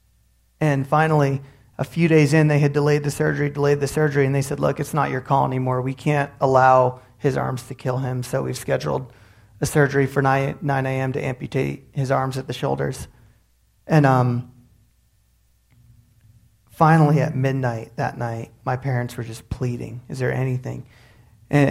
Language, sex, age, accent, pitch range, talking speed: English, male, 30-49, American, 125-150 Hz, 175 wpm